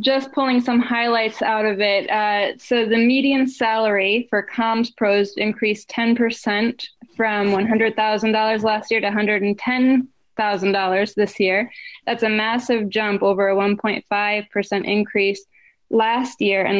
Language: English